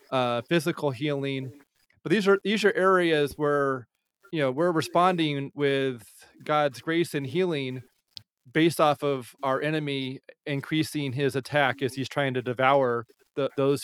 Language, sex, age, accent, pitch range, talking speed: English, male, 30-49, American, 135-170 Hz, 150 wpm